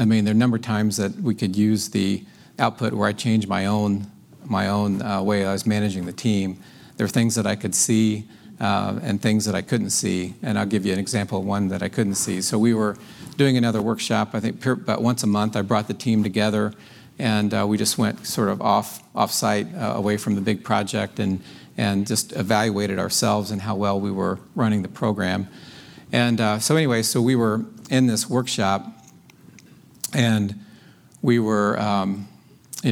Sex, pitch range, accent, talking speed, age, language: male, 100-110 Hz, American, 210 wpm, 50-69, English